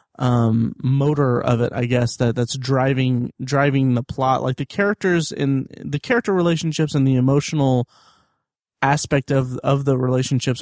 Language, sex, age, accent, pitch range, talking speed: English, male, 30-49, American, 125-150 Hz, 155 wpm